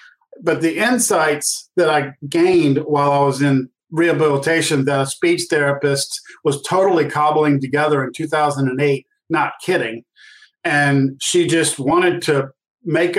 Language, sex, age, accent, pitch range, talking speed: English, male, 50-69, American, 145-220 Hz, 125 wpm